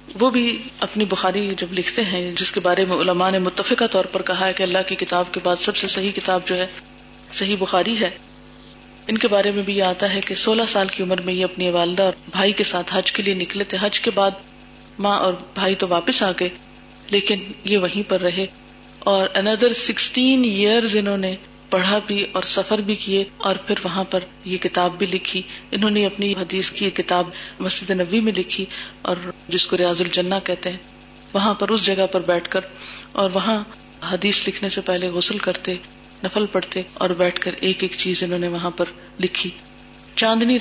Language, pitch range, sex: Urdu, 185-210 Hz, female